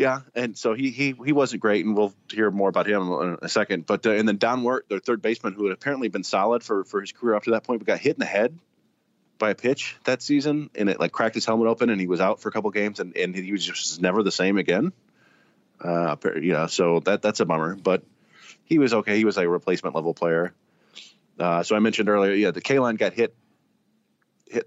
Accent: American